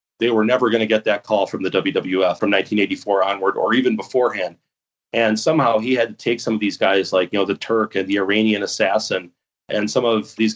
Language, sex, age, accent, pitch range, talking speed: English, male, 30-49, American, 105-115 Hz, 225 wpm